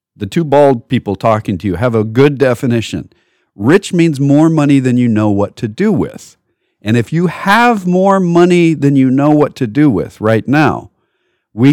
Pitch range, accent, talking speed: 100-145 Hz, American, 195 wpm